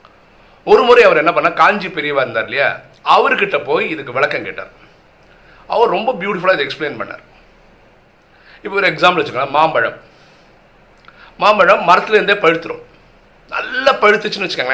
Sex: male